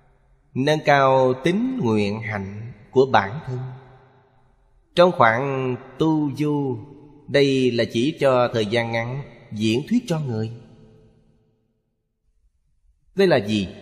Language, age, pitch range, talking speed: Vietnamese, 20-39, 105-145 Hz, 115 wpm